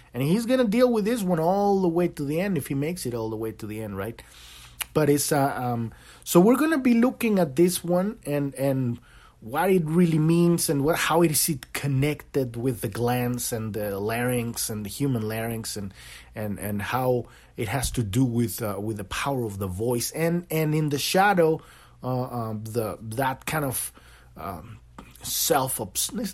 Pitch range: 110-155 Hz